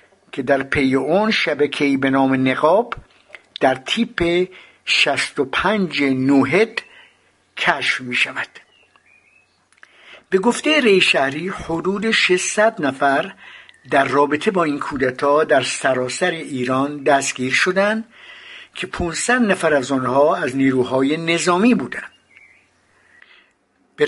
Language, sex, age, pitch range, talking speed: Persian, male, 60-79, 135-195 Hz, 105 wpm